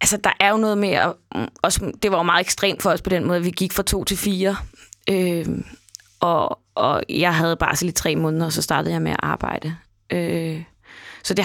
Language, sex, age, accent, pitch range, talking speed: Danish, female, 20-39, native, 160-195 Hz, 220 wpm